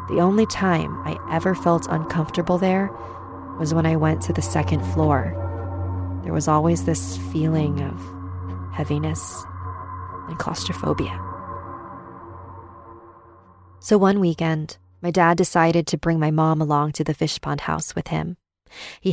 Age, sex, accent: 20-39, female, American